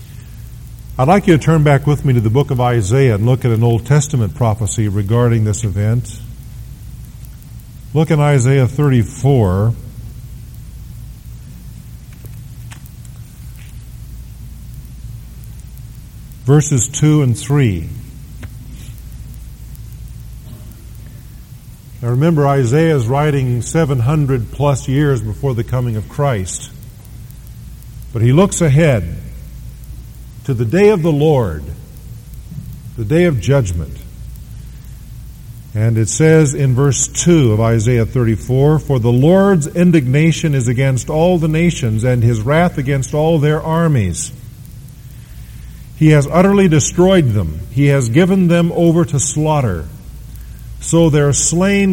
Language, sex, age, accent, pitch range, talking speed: English, male, 50-69, American, 120-150 Hz, 110 wpm